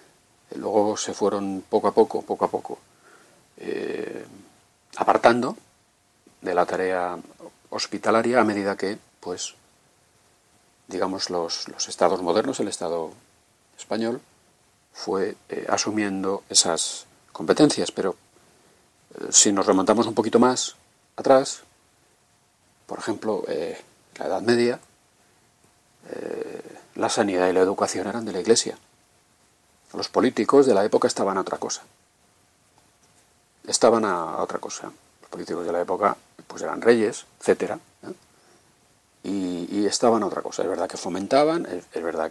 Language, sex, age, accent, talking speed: Spanish, male, 40-59, Spanish, 135 wpm